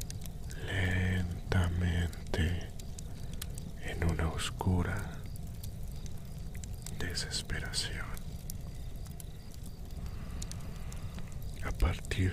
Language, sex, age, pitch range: Spanish, male, 50-69, 85-100 Hz